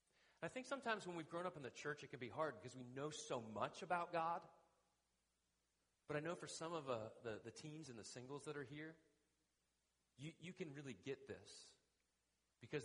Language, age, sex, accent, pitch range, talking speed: English, 40-59, male, American, 100-150 Hz, 205 wpm